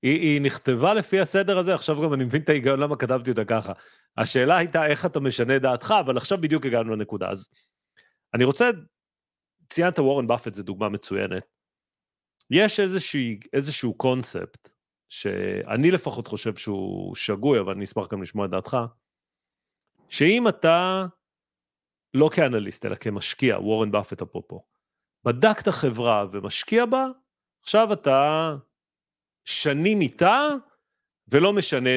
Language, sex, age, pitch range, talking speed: Hebrew, male, 40-59, 115-185 Hz, 130 wpm